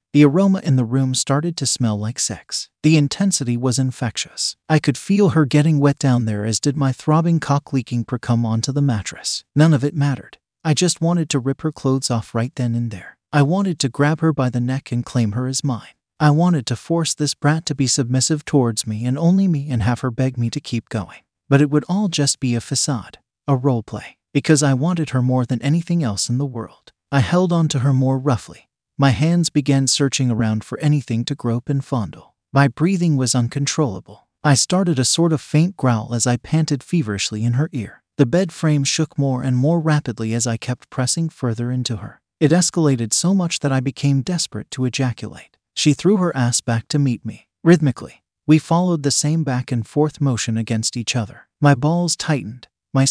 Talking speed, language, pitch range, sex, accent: 215 wpm, English, 120-155 Hz, male, American